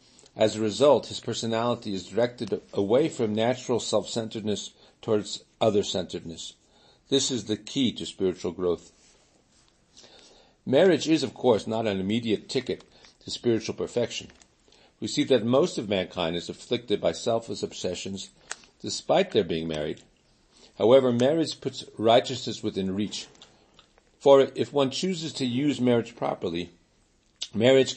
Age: 50-69